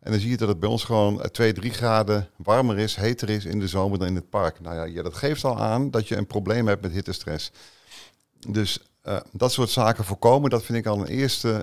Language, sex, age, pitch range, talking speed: Dutch, male, 50-69, 95-115 Hz, 255 wpm